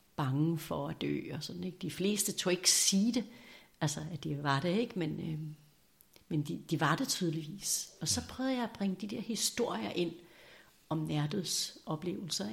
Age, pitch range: 60-79, 160-200 Hz